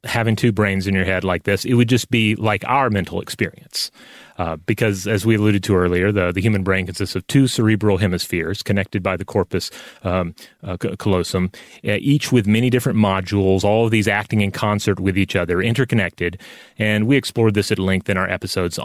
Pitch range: 95-115 Hz